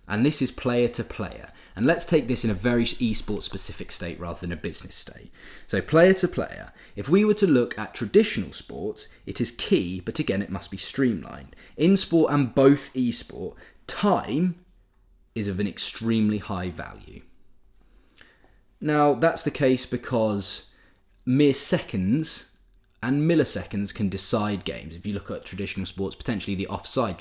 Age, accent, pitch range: 20-39, British, 95-135 Hz